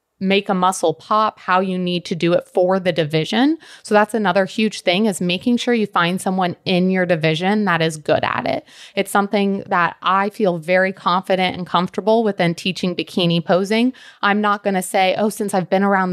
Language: English